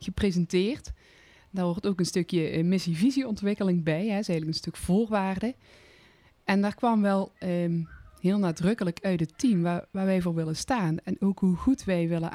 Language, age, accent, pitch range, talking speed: Dutch, 20-39, Dutch, 170-195 Hz, 190 wpm